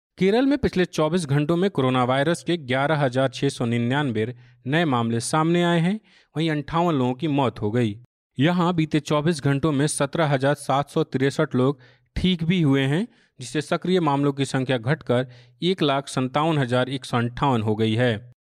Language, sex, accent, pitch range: Hindi, male, native, 125-160 Hz